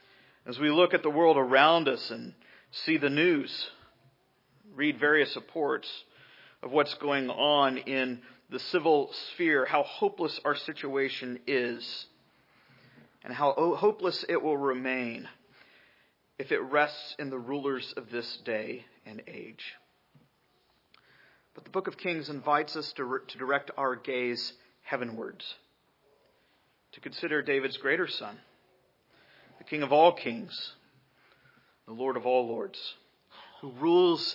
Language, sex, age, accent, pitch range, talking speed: English, male, 40-59, American, 125-160 Hz, 130 wpm